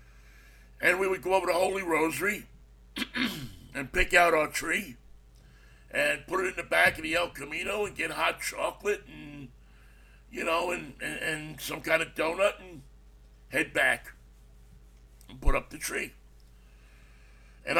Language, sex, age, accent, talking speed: English, male, 60-79, American, 155 wpm